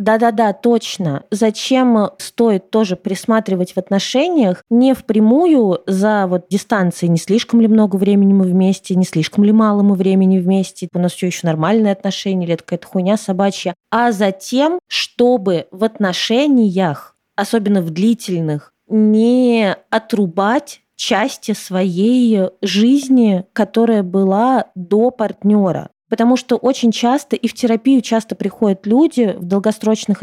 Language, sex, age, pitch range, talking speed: Russian, female, 20-39, 190-235 Hz, 130 wpm